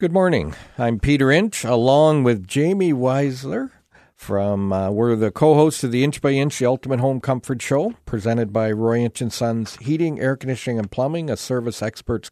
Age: 50-69